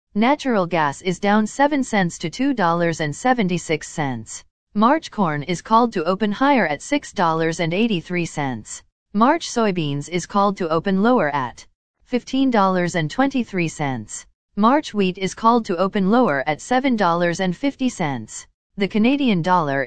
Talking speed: 165 wpm